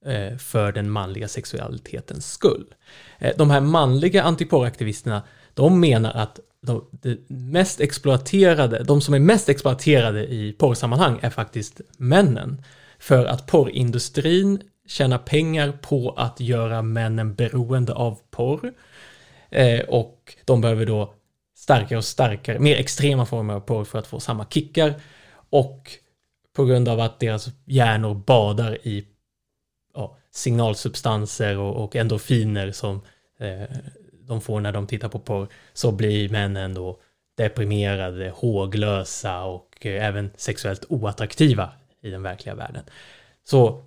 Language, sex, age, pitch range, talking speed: Swedish, male, 20-39, 105-135 Hz, 120 wpm